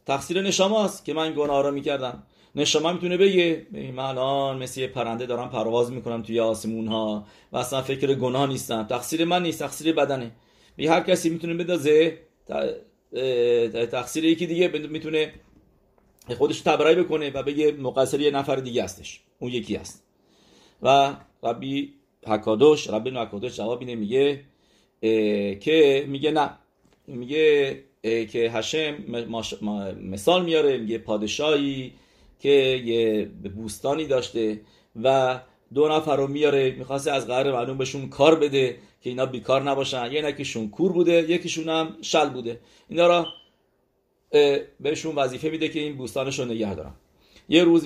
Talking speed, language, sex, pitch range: 145 wpm, English, male, 115-155 Hz